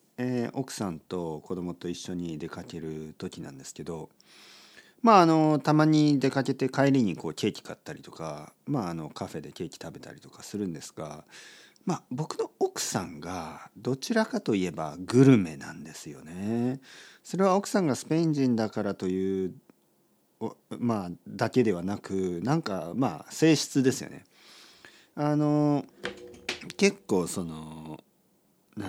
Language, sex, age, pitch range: Japanese, male, 40-59, 95-160 Hz